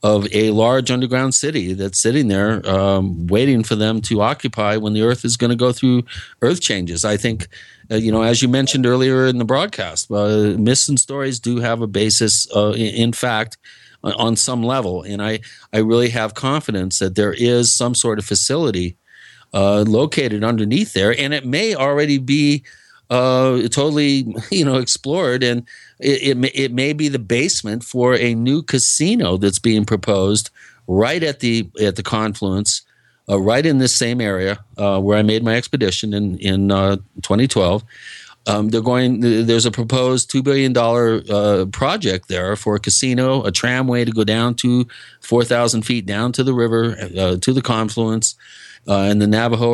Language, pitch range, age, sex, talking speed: English, 105-130 Hz, 50-69, male, 180 wpm